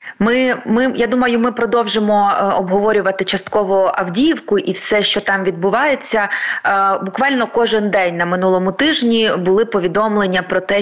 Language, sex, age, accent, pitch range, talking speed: Ukrainian, female, 20-39, native, 190-225 Hz, 135 wpm